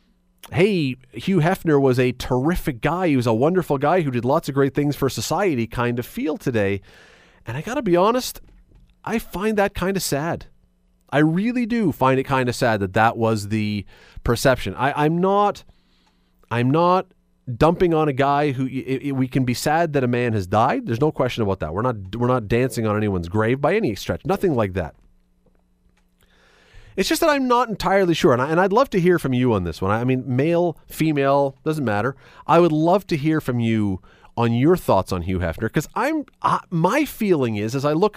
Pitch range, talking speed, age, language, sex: 105-160 Hz, 205 wpm, 30-49, English, male